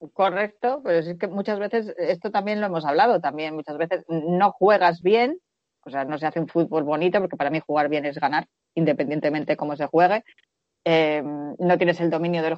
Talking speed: 200 wpm